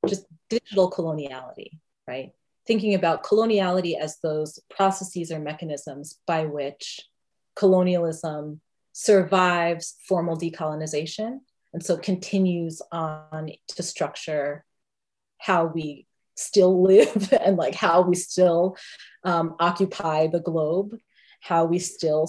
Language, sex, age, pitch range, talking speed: English, female, 30-49, 155-195 Hz, 110 wpm